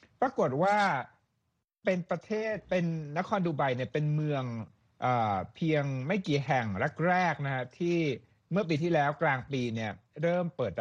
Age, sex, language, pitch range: 60-79, male, Thai, 120-165 Hz